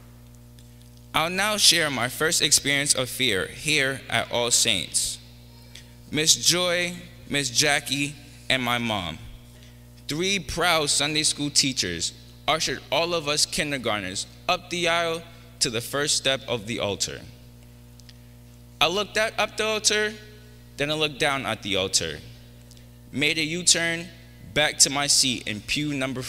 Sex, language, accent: male, English, American